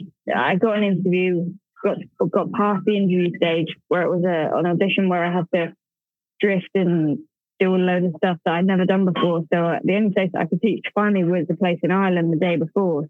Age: 20-39